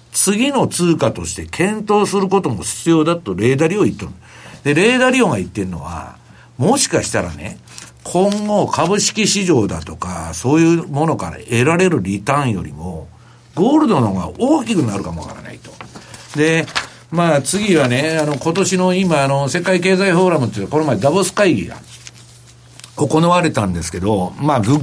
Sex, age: male, 60-79